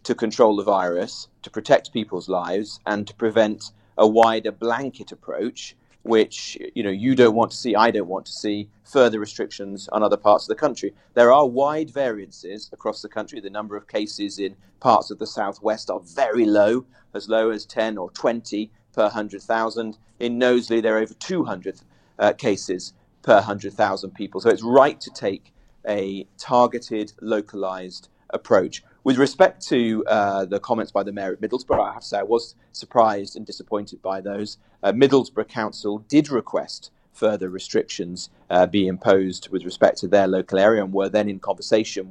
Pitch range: 95-115 Hz